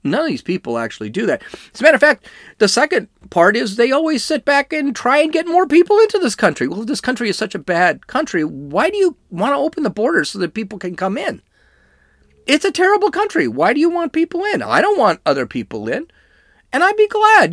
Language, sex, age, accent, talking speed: English, male, 40-59, American, 245 wpm